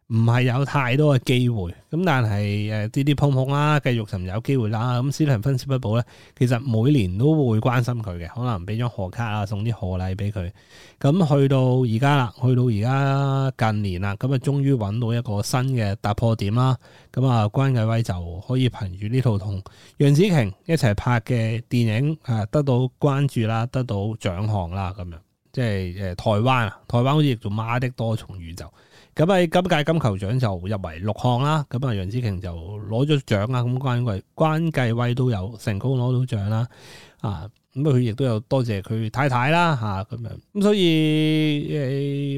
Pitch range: 105-140 Hz